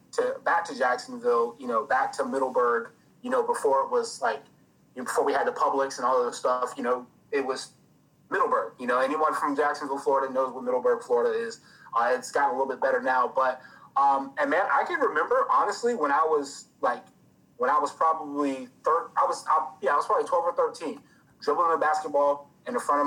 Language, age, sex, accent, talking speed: English, 30-49, male, American, 220 wpm